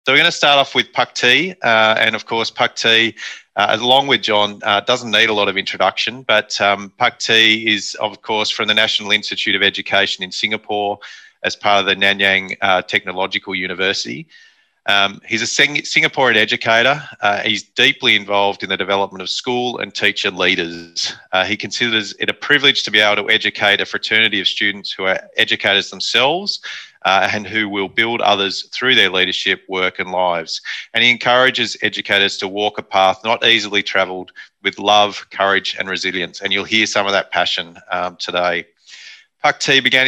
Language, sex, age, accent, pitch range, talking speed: English, male, 30-49, Australian, 100-115 Hz, 190 wpm